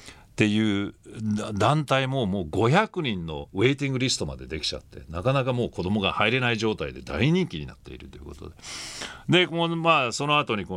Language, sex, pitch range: Japanese, male, 95-140 Hz